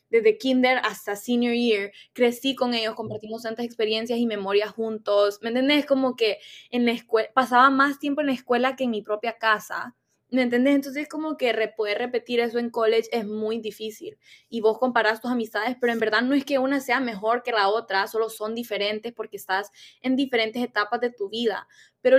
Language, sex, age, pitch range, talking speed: Spanish, female, 20-39, 220-260 Hz, 205 wpm